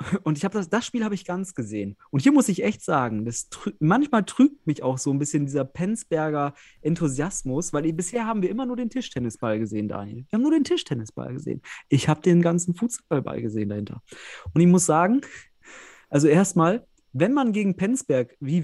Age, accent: 30-49, German